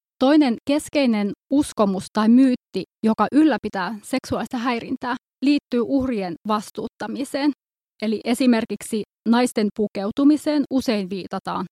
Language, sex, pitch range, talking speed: Finnish, female, 190-235 Hz, 90 wpm